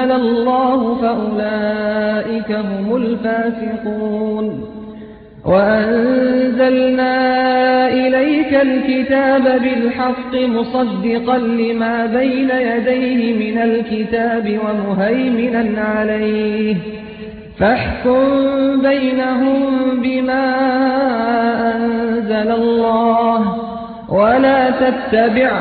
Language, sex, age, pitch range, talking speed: Persian, male, 30-49, 215-255 Hz, 55 wpm